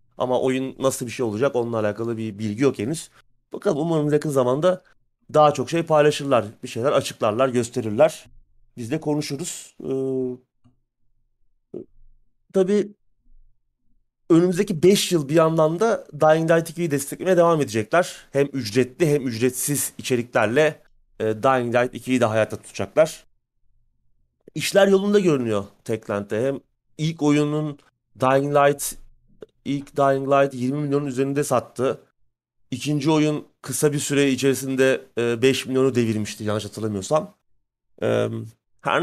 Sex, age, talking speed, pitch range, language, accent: male, 30-49, 125 wpm, 120-150 Hz, Turkish, native